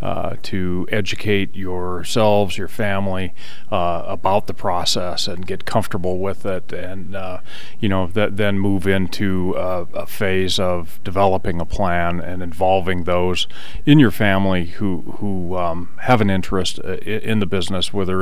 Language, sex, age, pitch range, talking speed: English, male, 40-59, 95-105 Hz, 155 wpm